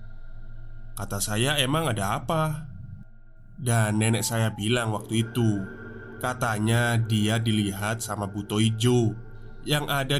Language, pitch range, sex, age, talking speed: Indonesian, 110-125 Hz, male, 20-39, 110 wpm